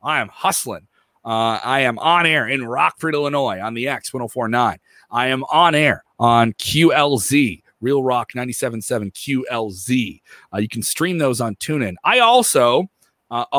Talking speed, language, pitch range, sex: 155 wpm, English, 105-135 Hz, male